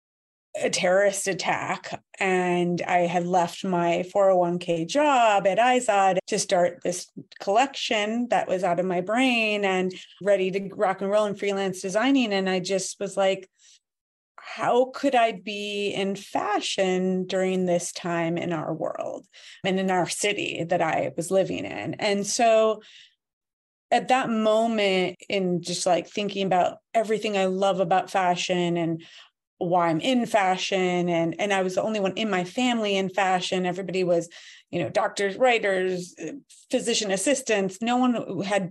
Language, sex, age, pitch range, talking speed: English, female, 30-49, 180-215 Hz, 155 wpm